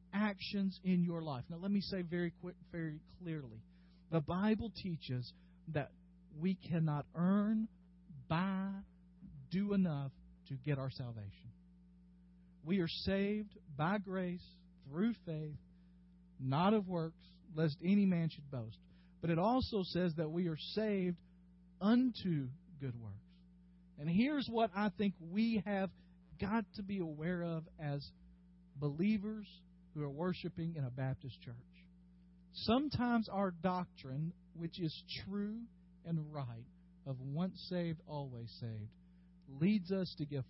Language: English